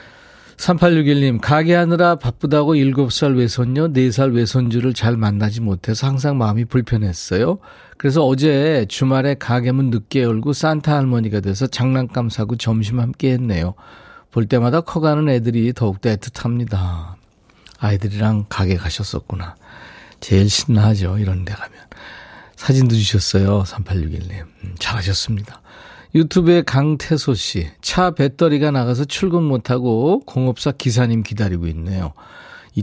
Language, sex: Korean, male